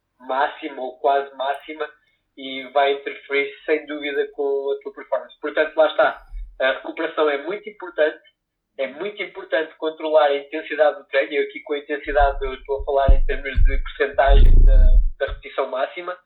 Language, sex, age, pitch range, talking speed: Portuguese, male, 20-39, 140-170 Hz, 170 wpm